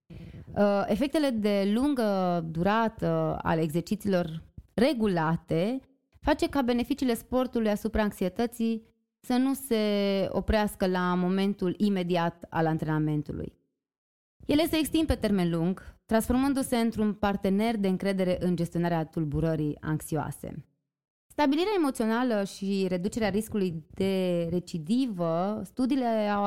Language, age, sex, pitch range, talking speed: Romanian, 20-39, female, 180-245 Hz, 105 wpm